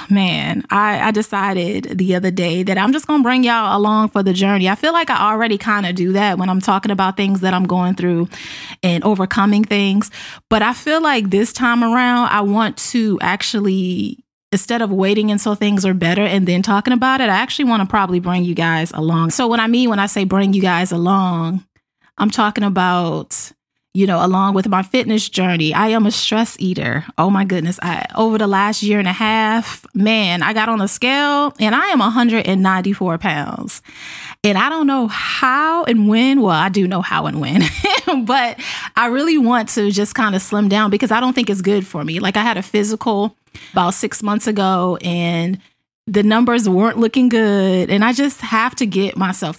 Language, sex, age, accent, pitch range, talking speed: English, female, 20-39, American, 185-225 Hz, 210 wpm